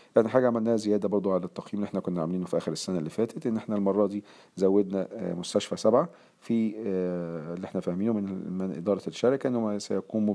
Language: Arabic